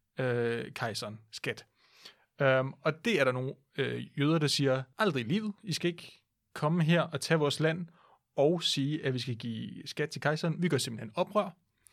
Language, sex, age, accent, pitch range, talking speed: Danish, male, 30-49, native, 130-170 Hz, 190 wpm